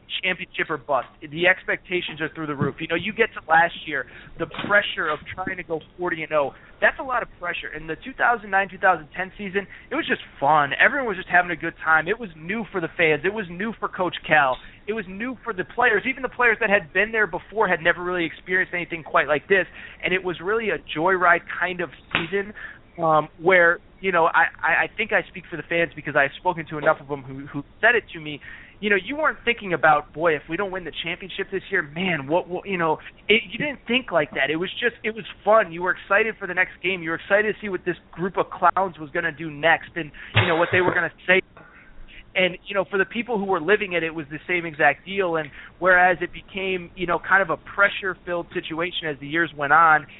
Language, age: English, 20-39